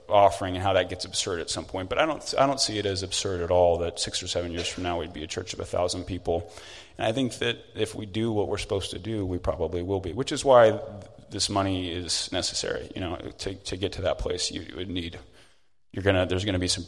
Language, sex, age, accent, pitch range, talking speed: English, male, 30-49, American, 90-105 Hz, 275 wpm